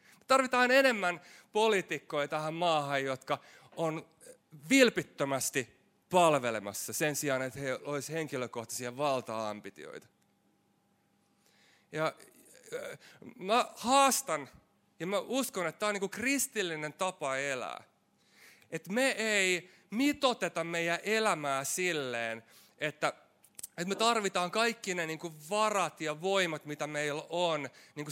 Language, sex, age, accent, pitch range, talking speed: Finnish, male, 30-49, native, 145-205 Hz, 110 wpm